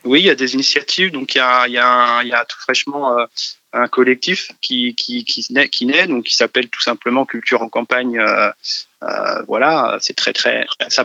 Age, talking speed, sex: 20-39, 185 wpm, male